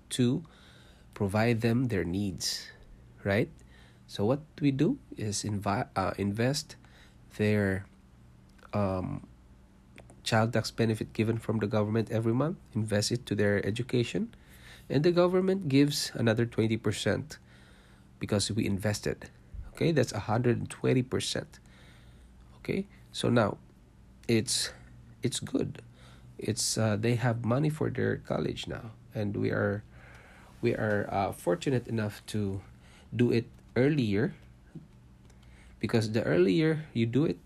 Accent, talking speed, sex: Filipino, 120 wpm, male